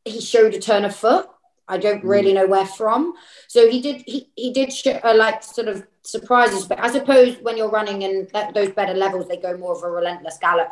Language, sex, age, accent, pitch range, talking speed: English, female, 20-39, British, 170-220 Hz, 235 wpm